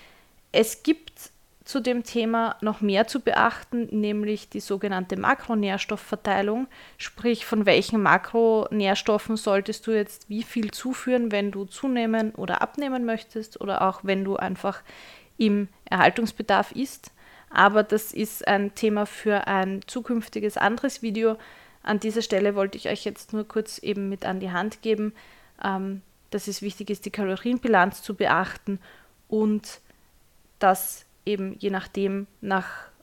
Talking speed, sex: 140 wpm, female